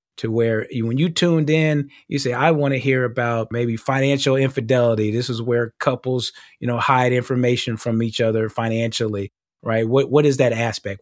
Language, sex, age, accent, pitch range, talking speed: English, male, 30-49, American, 115-140 Hz, 185 wpm